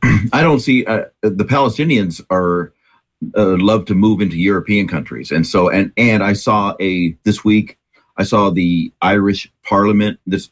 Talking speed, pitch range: 165 wpm, 90-110 Hz